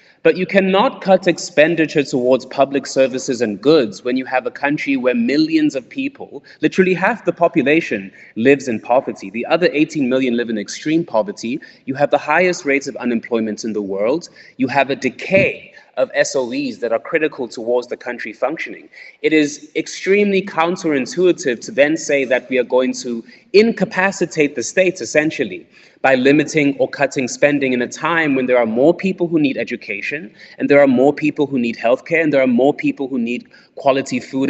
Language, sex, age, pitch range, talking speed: English, male, 20-39, 125-175 Hz, 185 wpm